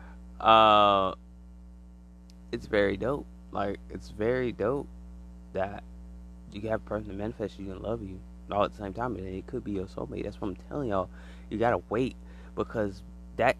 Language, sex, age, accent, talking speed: English, male, 20-39, American, 175 wpm